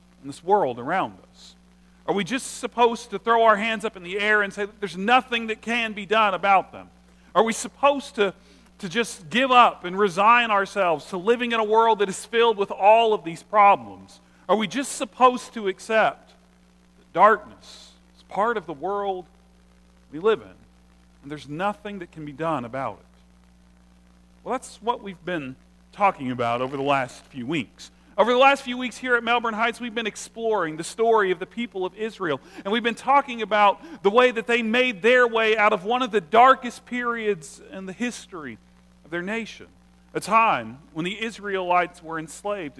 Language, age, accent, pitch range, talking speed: English, 40-59, American, 140-235 Hz, 195 wpm